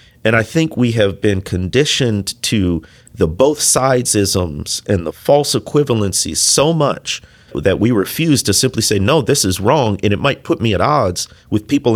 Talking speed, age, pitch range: 175 wpm, 40-59, 100-130 Hz